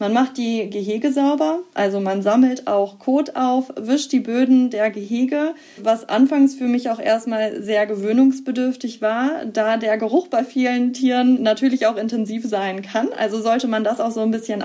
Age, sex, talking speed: 20-39, female, 180 wpm